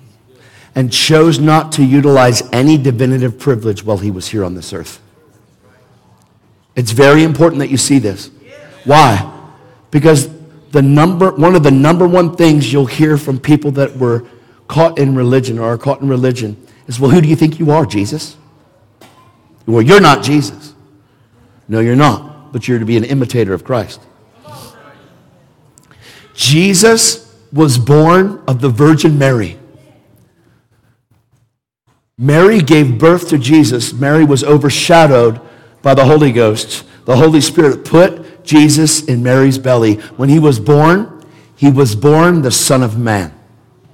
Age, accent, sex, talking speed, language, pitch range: 50-69, American, male, 145 wpm, English, 120-155 Hz